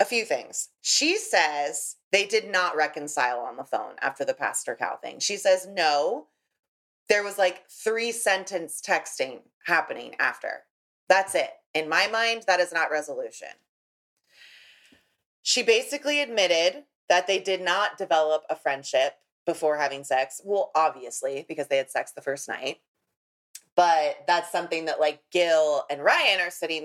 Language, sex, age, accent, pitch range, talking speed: English, female, 30-49, American, 150-200 Hz, 155 wpm